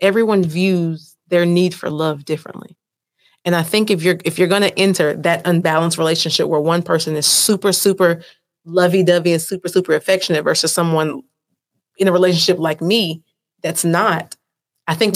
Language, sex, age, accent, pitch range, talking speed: English, female, 30-49, American, 170-200 Hz, 165 wpm